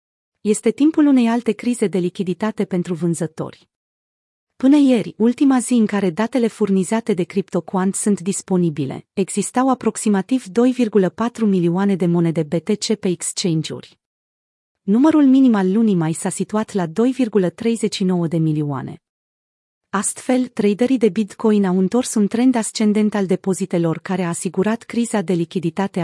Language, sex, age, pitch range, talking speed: Romanian, female, 30-49, 180-225 Hz, 130 wpm